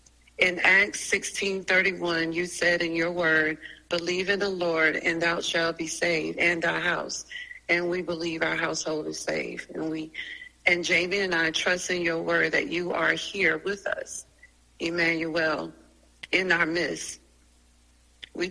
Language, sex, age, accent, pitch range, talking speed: English, female, 40-59, American, 165-185 Hz, 155 wpm